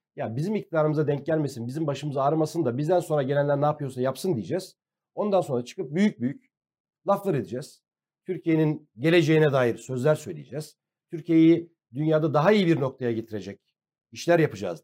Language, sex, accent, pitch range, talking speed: Turkish, male, native, 145-195 Hz, 150 wpm